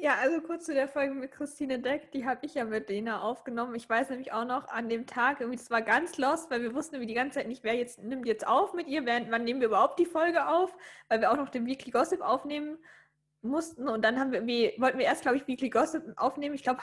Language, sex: German, female